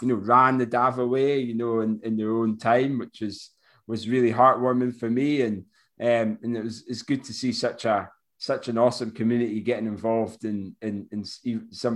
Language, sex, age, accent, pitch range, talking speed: English, male, 20-39, British, 110-140 Hz, 205 wpm